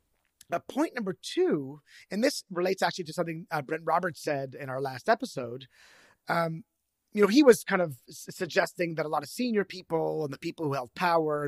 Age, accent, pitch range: 30-49, American, 135-185 Hz